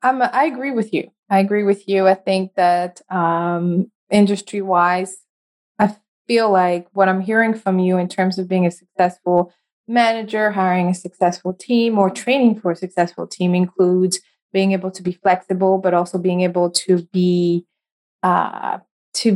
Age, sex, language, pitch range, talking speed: 20-39, female, English, 185-210 Hz, 160 wpm